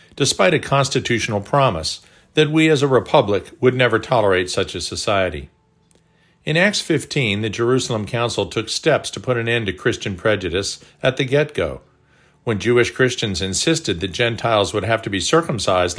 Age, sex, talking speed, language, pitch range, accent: 50-69, male, 165 wpm, English, 105-140 Hz, American